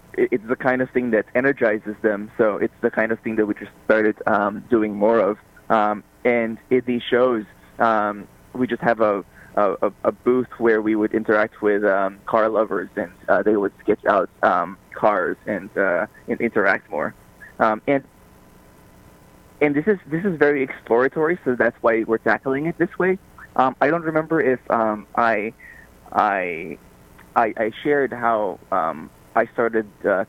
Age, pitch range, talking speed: 20-39, 105-130 Hz, 175 wpm